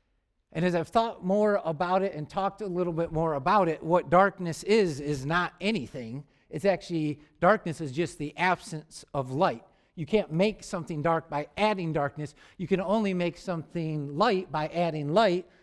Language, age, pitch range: English, 50-69, 150-190 Hz